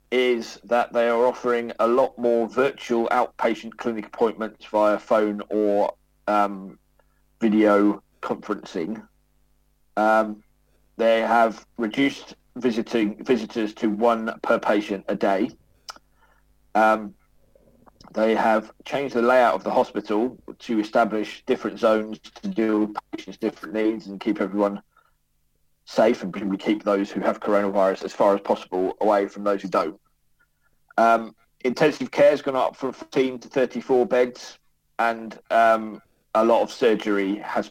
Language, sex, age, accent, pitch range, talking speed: English, male, 40-59, British, 95-115 Hz, 140 wpm